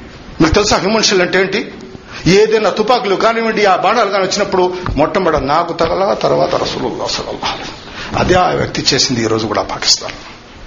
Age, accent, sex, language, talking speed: 50-69, native, male, Telugu, 150 wpm